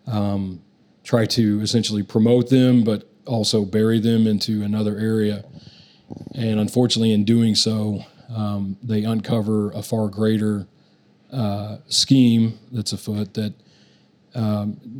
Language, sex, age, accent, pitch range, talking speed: English, male, 40-59, American, 105-115 Hz, 120 wpm